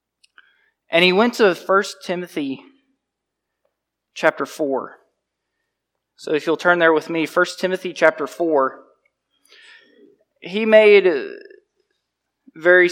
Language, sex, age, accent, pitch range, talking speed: English, male, 20-39, American, 145-200 Hz, 100 wpm